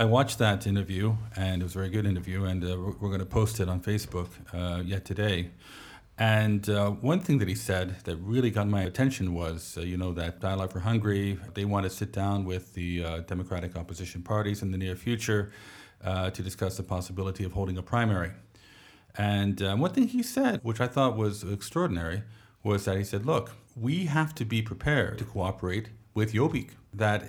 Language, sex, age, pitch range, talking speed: English, male, 40-59, 95-120 Hz, 205 wpm